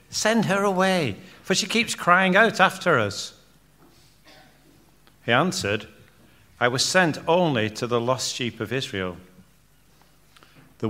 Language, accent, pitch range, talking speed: English, British, 105-145 Hz, 125 wpm